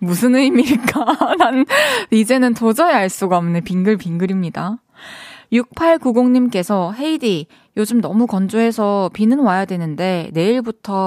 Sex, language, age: female, Korean, 20-39